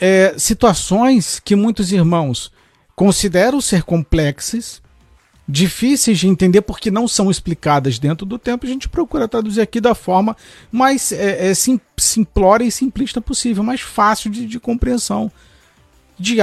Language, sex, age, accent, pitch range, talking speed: Portuguese, male, 50-69, Brazilian, 175-245 Hz, 130 wpm